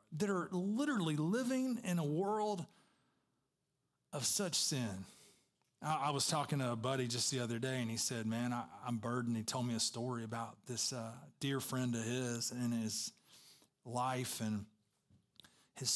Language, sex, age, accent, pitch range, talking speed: English, male, 40-59, American, 130-170 Hz, 165 wpm